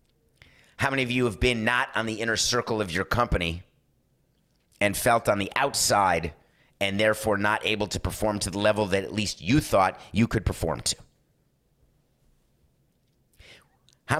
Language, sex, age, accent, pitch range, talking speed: English, male, 30-49, American, 100-135 Hz, 160 wpm